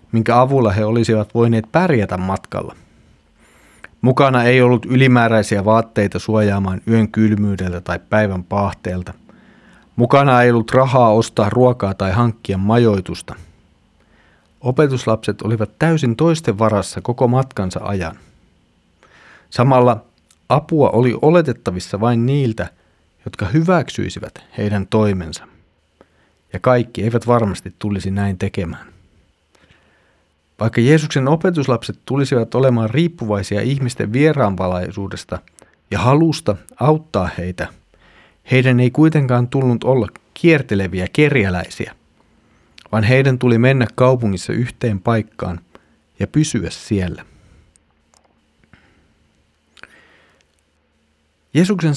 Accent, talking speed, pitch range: native, 95 wpm, 90-125 Hz